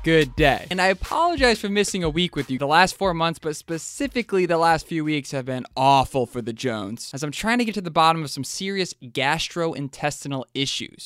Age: 20-39